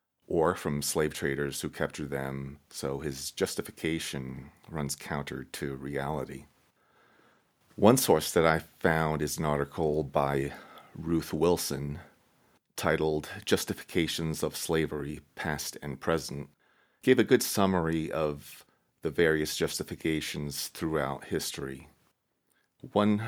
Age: 40-59